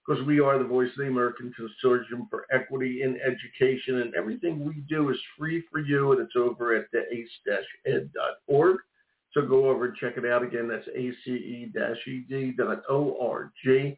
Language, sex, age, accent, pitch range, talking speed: English, male, 50-69, American, 125-150 Hz, 155 wpm